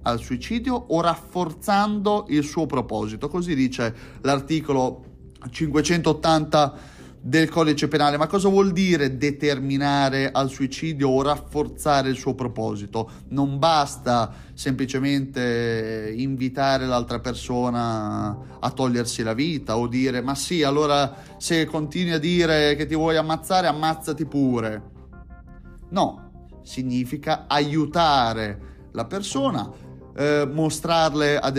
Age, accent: 30-49, native